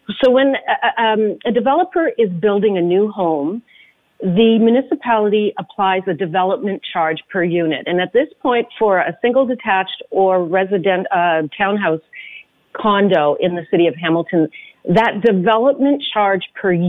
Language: English